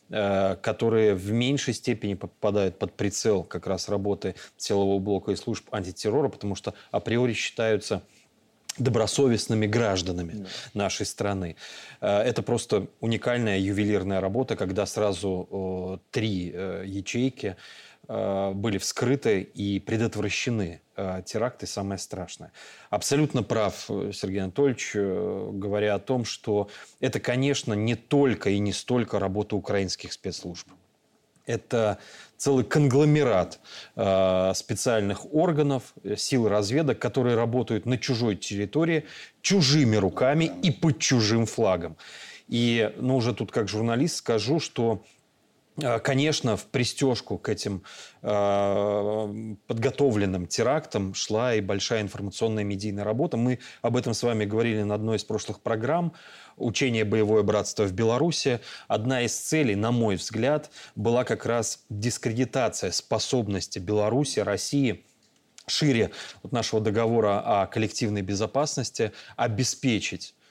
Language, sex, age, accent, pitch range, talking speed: Russian, male, 30-49, native, 100-125 Hz, 115 wpm